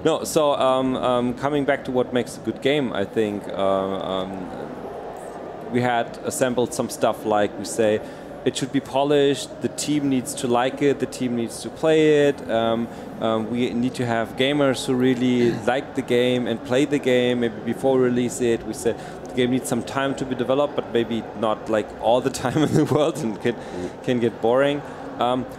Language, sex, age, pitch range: German, male, 30-49, 115-140 Hz